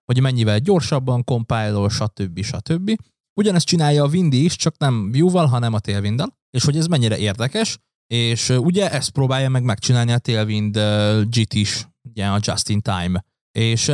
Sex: male